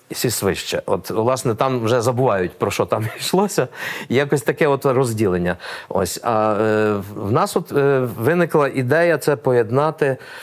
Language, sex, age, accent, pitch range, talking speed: Ukrainian, male, 50-69, native, 110-140 Hz, 150 wpm